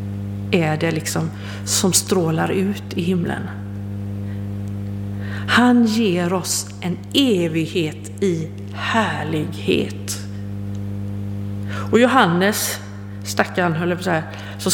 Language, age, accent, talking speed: Swedish, 50-69, native, 90 wpm